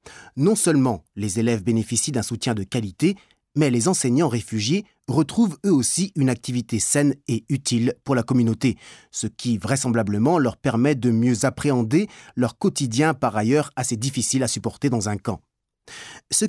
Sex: male